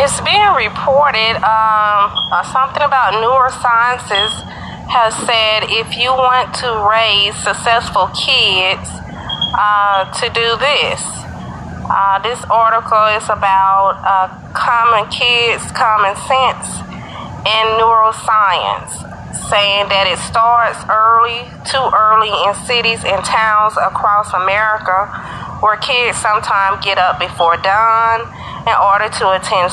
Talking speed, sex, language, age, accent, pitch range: 115 wpm, female, English, 30-49, American, 200-235 Hz